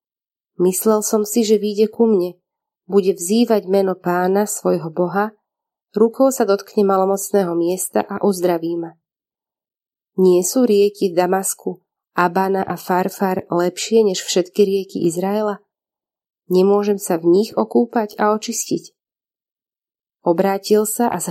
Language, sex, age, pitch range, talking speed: Slovak, female, 30-49, 180-210 Hz, 125 wpm